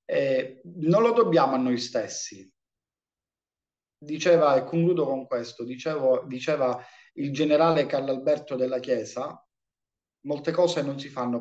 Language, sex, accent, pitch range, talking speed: Italian, male, native, 120-150 Hz, 130 wpm